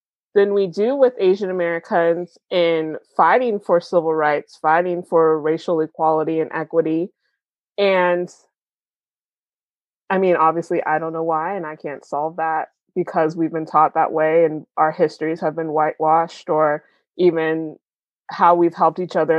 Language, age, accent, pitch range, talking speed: English, 20-39, American, 160-200 Hz, 150 wpm